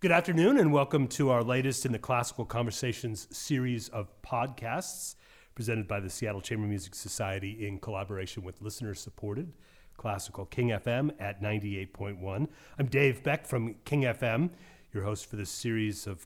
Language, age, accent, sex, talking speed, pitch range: English, 40-59, American, male, 155 wpm, 100-130 Hz